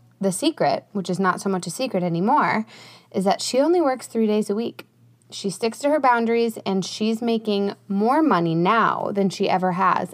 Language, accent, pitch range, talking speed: English, American, 175-220 Hz, 200 wpm